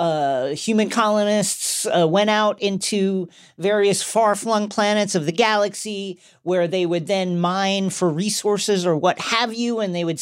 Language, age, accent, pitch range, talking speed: English, 40-59, American, 160-225 Hz, 160 wpm